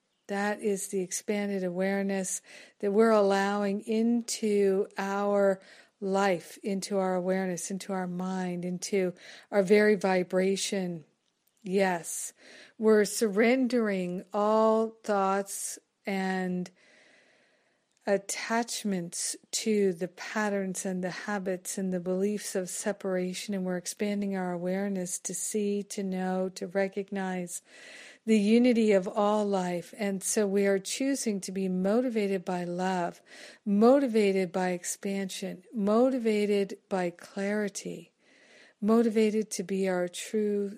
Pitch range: 185-215 Hz